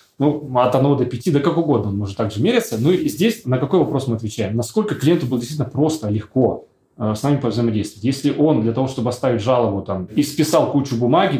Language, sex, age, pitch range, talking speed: Russian, male, 20-39, 115-150 Hz, 220 wpm